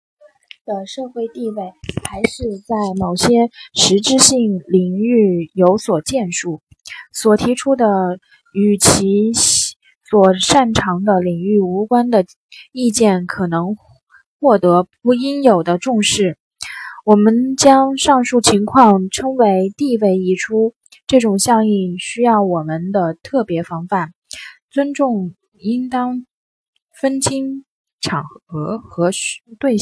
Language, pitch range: Chinese, 185-240 Hz